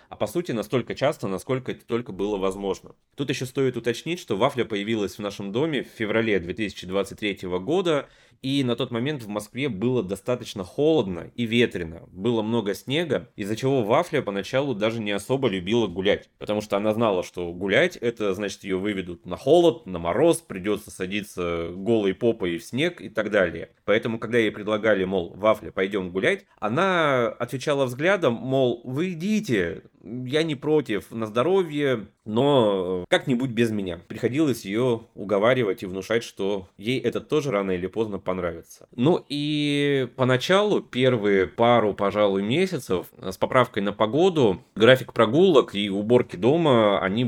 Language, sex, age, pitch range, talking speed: Russian, male, 20-39, 95-125 Hz, 155 wpm